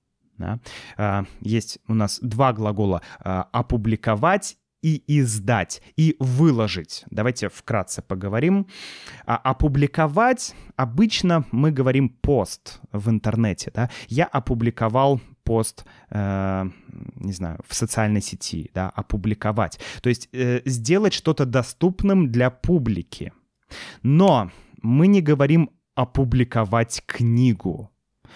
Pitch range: 105-145 Hz